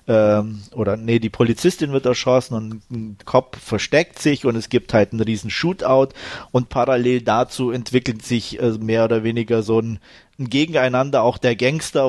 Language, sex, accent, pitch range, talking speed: German, male, German, 110-130 Hz, 170 wpm